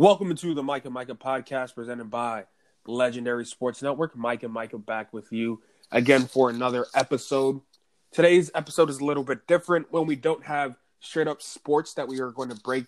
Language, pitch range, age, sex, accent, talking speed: English, 115-140 Hz, 20-39, male, American, 200 wpm